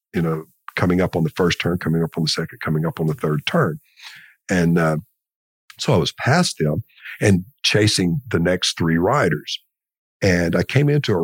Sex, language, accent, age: male, English, American, 50-69